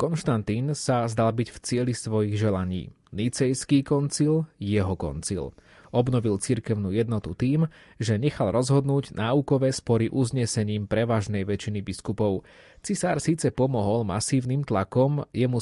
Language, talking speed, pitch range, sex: Slovak, 120 wpm, 105-130 Hz, male